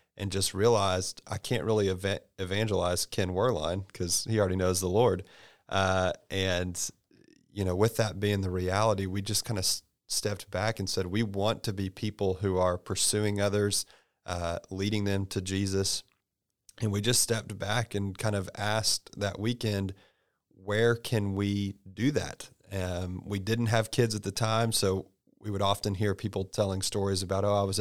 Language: English